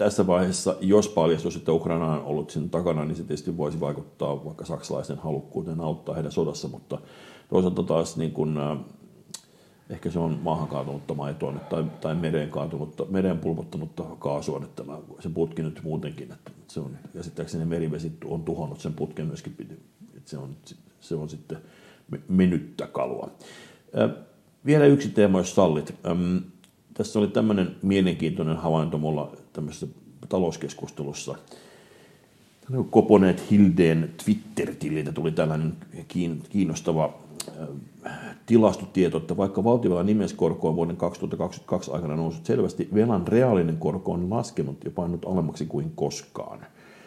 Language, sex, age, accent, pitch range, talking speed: Finnish, male, 60-79, native, 75-90 Hz, 130 wpm